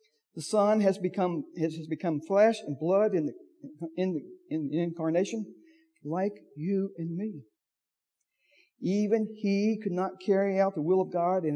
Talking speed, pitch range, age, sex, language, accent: 145 wpm, 165-215 Hz, 60-79, male, English, American